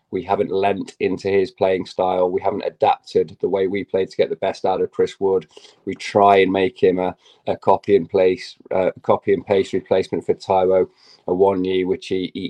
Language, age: English, 20-39